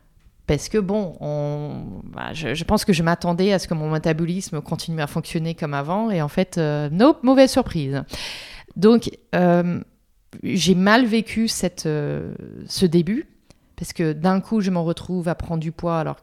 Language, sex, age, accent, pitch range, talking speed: French, female, 30-49, French, 155-205 Hz, 180 wpm